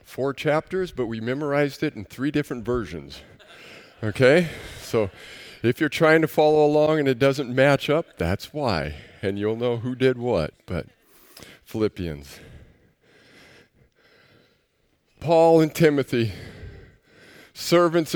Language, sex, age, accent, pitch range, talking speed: English, male, 50-69, American, 110-165 Hz, 120 wpm